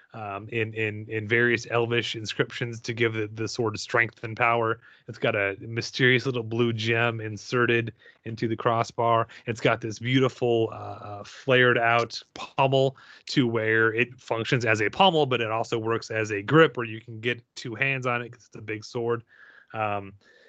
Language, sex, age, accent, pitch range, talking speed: English, male, 30-49, American, 110-130 Hz, 185 wpm